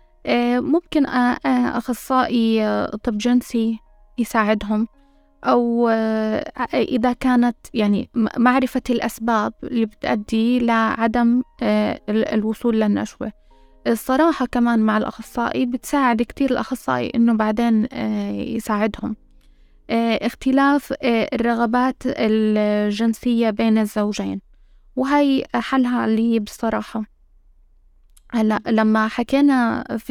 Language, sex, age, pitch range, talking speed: Arabic, female, 20-39, 215-245 Hz, 75 wpm